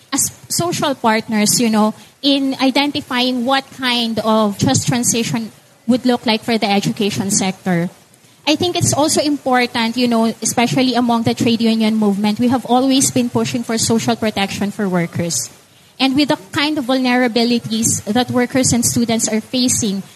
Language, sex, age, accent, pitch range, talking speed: English, female, 20-39, Filipino, 215-260 Hz, 160 wpm